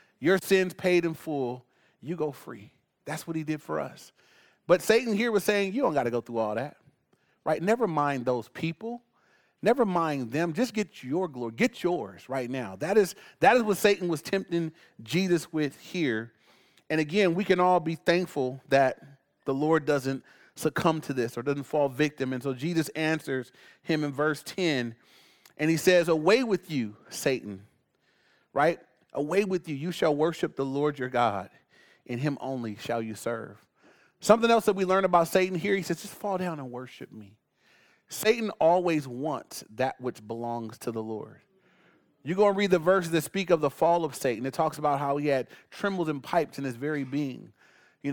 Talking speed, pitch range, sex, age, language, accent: 195 wpm, 135-185 Hz, male, 30-49, English, American